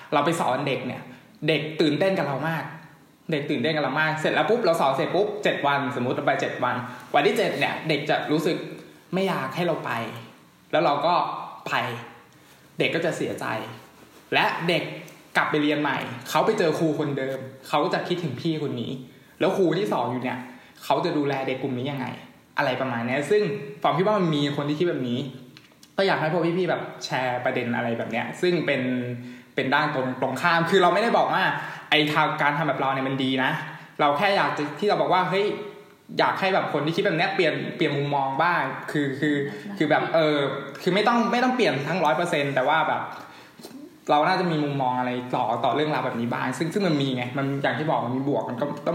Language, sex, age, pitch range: Thai, male, 20-39, 130-170 Hz